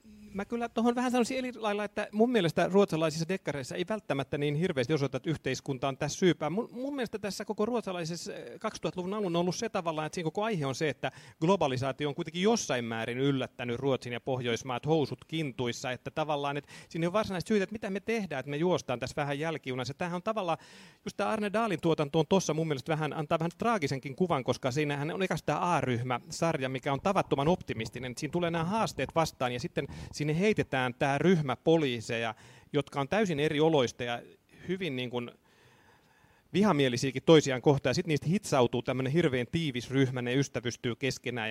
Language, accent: Finnish, native